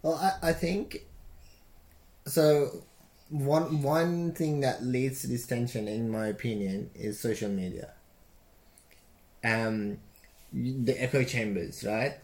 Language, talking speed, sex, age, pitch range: English, 120 wpm, male, 20-39, 105-140 Hz